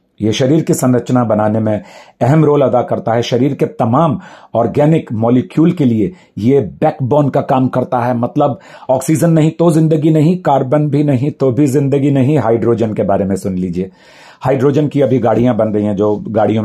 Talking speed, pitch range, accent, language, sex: 185 wpm, 105-140 Hz, native, Hindi, male